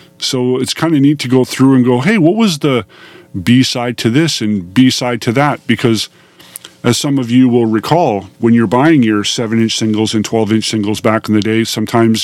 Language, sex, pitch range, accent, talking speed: English, male, 115-135 Hz, American, 205 wpm